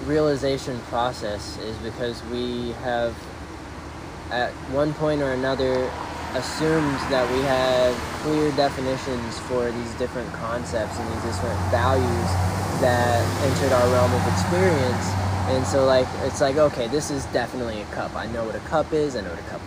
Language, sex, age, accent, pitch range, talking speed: English, male, 10-29, American, 100-130 Hz, 160 wpm